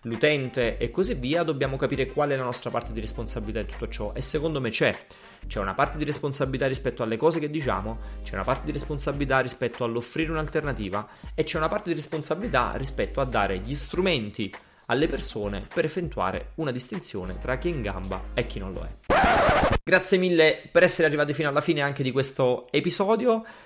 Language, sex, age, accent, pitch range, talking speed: Italian, male, 30-49, native, 115-155 Hz, 195 wpm